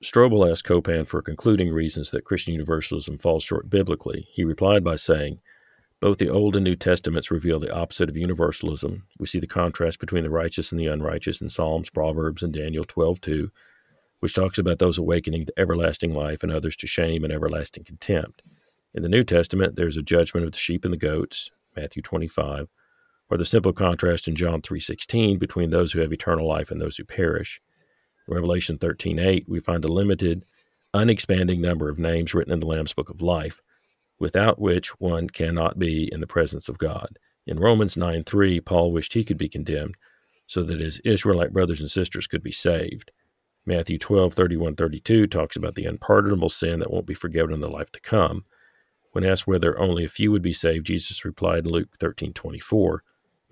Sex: male